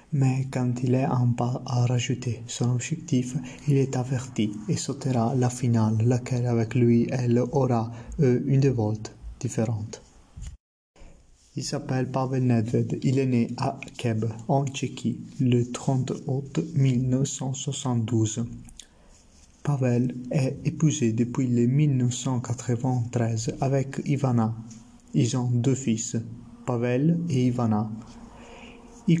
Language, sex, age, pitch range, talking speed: French, male, 30-49, 115-140 Hz, 115 wpm